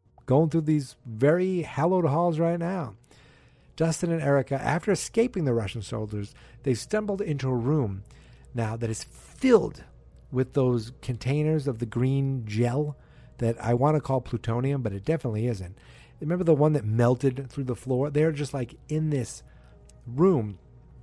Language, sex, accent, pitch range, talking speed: English, male, American, 115-155 Hz, 160 wpm